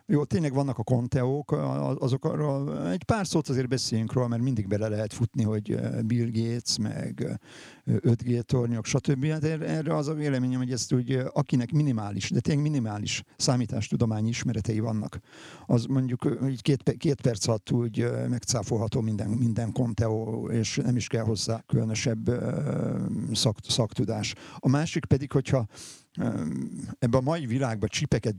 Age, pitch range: 50-69, 115-140 Hz